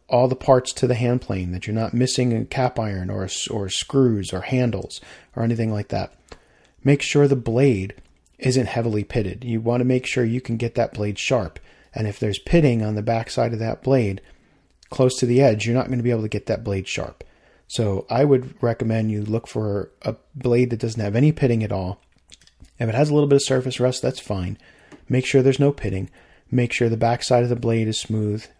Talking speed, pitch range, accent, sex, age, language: 225 wpm, 105-125 Hz, American, male, 40-59, English